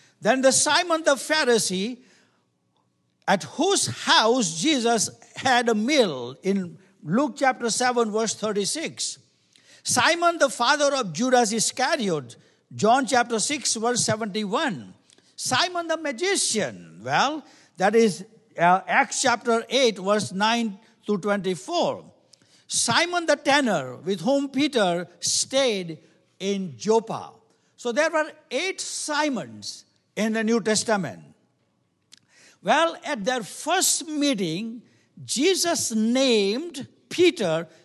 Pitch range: 200-285 Hz